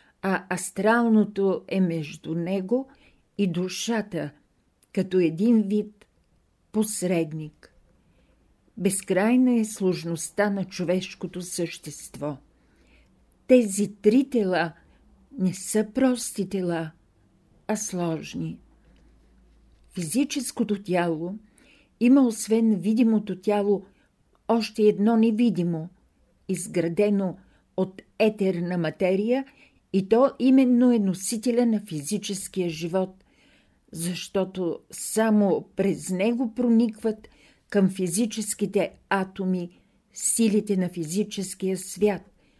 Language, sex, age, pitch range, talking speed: Bulgarian, female, 50-69, 175-215 Hz, 85 wpm